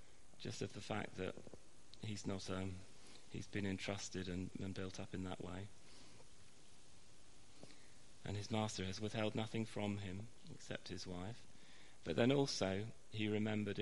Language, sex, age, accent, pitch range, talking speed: English, male, 40-59, British, 95-110 Hz, 150 wpm